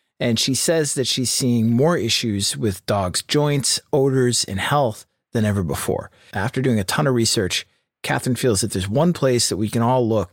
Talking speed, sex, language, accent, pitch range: 200 wpm, male, English, American, 110-150 Hz